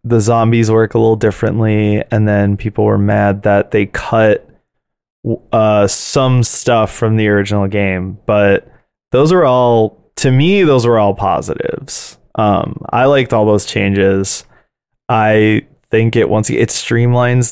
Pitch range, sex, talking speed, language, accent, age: 105-125 Hz, male, 145 wpm, English, American, 20-39